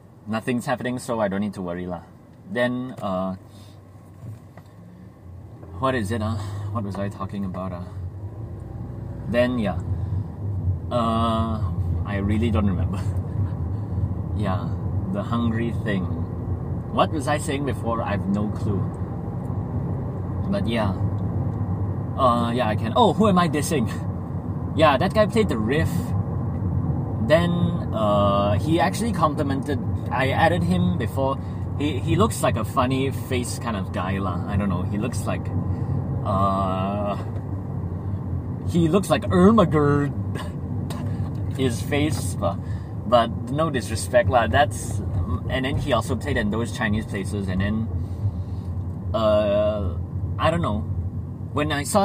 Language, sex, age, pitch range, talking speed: English, male, 30-49, 95-125 Hz, 135 wpm